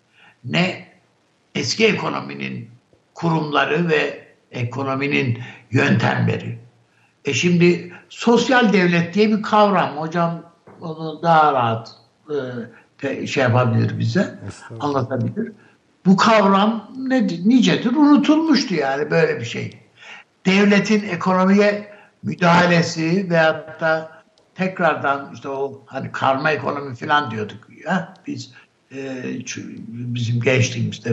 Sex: male